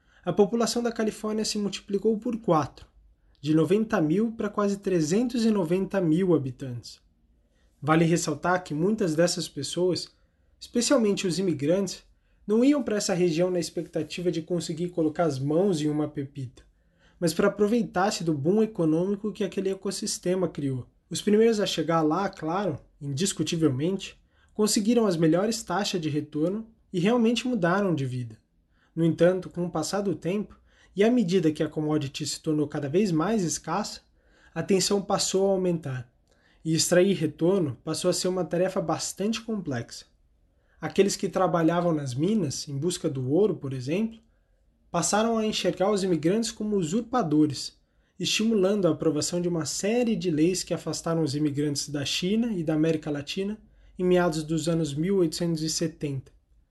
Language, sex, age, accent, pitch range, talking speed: Portuguese, male, 20-39, Brazilian, 155-200 Hz, 150 wpm